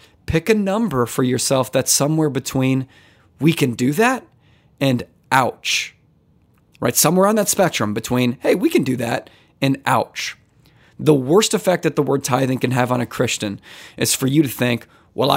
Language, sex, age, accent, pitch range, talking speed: English, male, 30-49, American, 125-155 Hz, 175 wpm